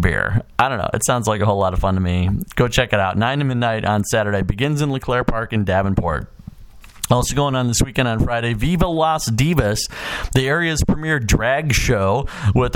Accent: American